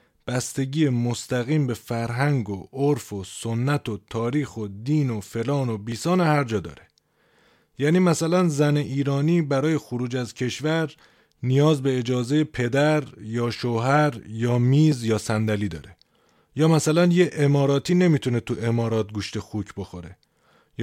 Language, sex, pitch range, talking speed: Persian, male, 110-145 Hz, 145 wpm